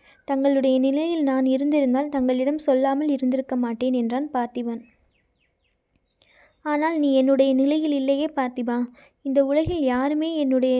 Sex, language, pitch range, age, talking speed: female, Tamil, 255-290 Hz, 20-39, 110 wpm